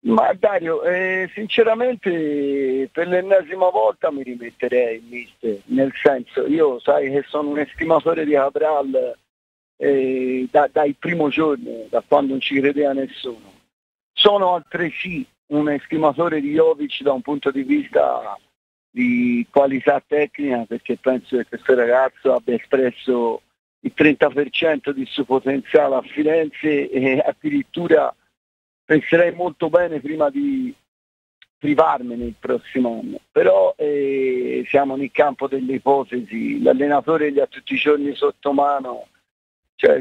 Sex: male